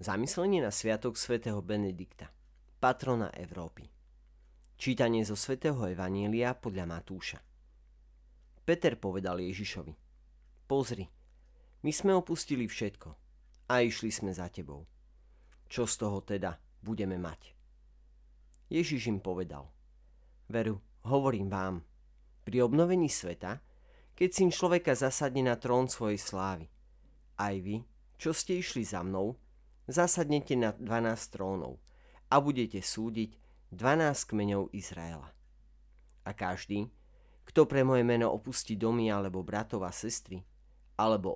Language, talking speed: Slovak, 115 wpm